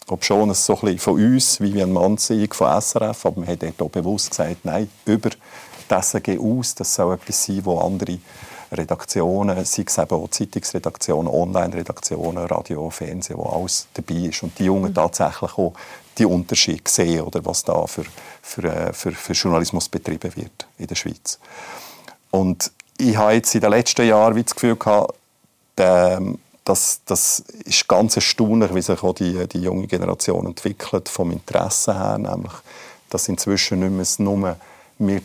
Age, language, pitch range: 50-69, German, 85-100 Hz